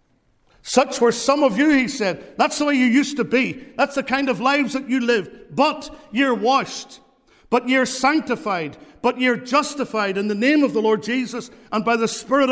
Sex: male